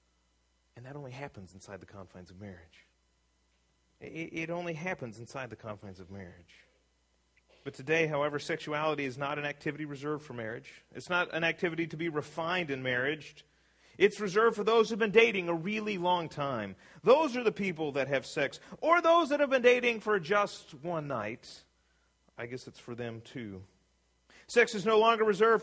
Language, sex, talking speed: English, male, 185 wpm